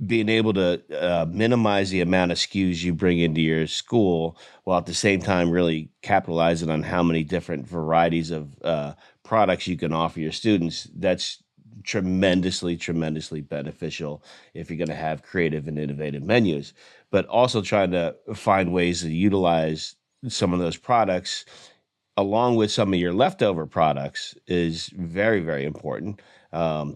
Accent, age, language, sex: American, 30-49, English, male